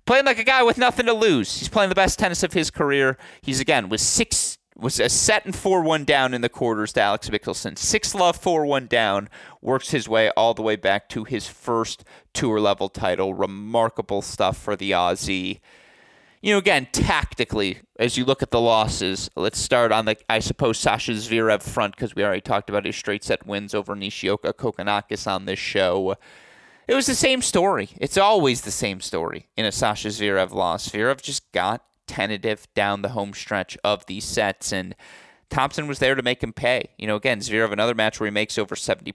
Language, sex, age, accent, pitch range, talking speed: English, male, 30-49, American, 105-155 Hz, 205 wpm